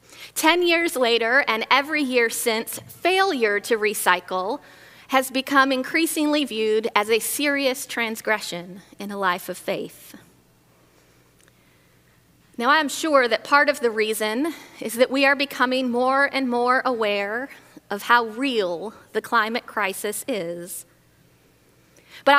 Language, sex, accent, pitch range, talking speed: English, female, American, 215-280 Hz, 130 wpm